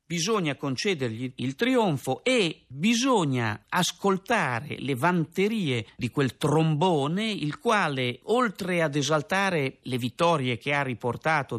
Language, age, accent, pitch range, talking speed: Italian, 50-69, native, 130-175 Hz, 115 wpm